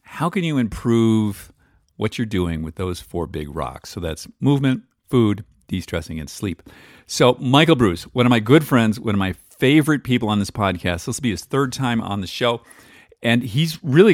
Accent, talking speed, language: American, 200 wpm, English